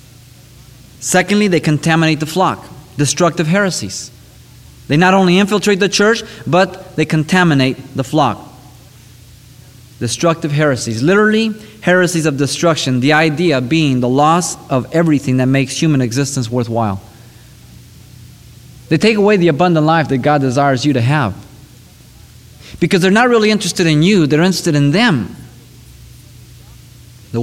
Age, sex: 30-49, male